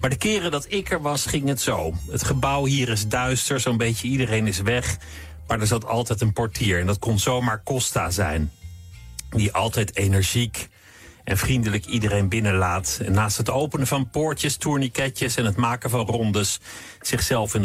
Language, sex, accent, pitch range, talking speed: Dutch, male, Dutch, 95-125 Hz, 180 wpm